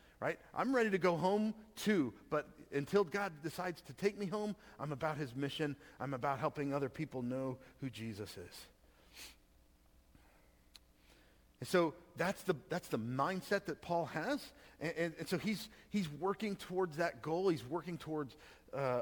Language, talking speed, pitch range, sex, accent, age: English, 165 wpm, 115-170 Hz, male, American, 40-59